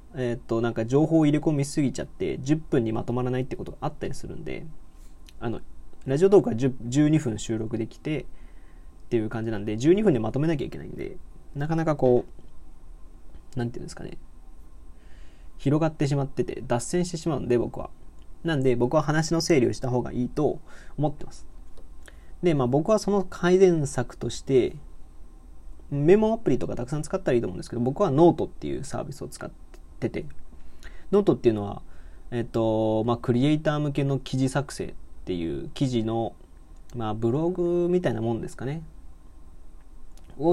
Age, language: 20-39, Japanese